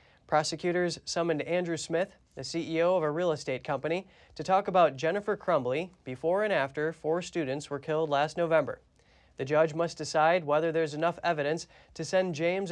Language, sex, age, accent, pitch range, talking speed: English, male, 20-39, American, 145-175 Hz, 170 wpm